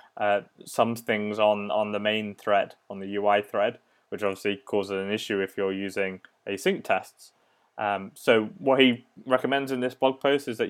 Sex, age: male, 20-39